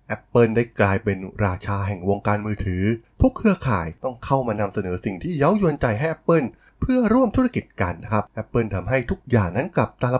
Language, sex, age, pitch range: Thai, male, 20-39, 100-135 Hz